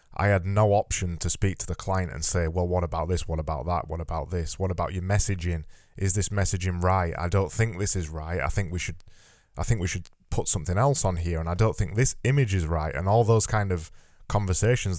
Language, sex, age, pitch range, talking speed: English, male, 10-29, 90-110 Hz, 250 wpm